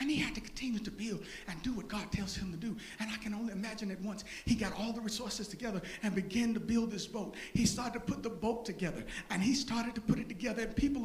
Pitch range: 220-300 Hz